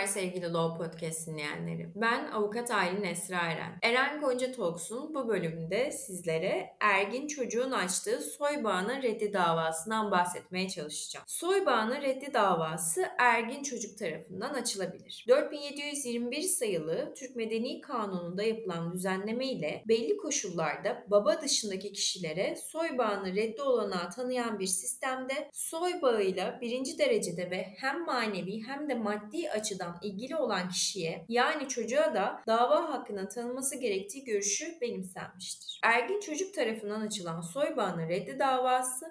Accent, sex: native, female